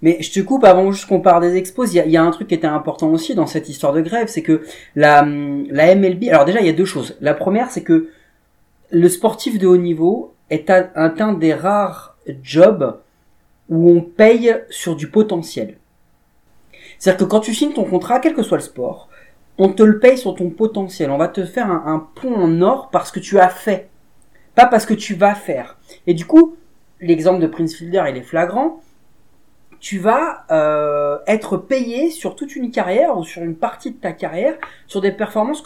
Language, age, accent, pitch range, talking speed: French, 30-49, French, 160-220 Hz, 210 wpm